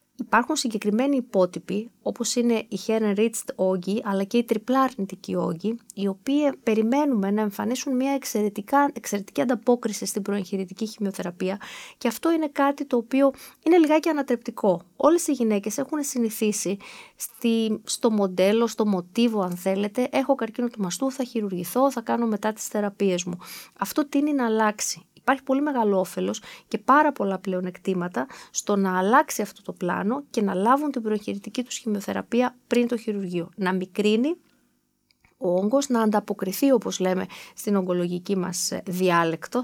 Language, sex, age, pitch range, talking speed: Greek, female, 20-39, 195-255 Hz, 150 wpm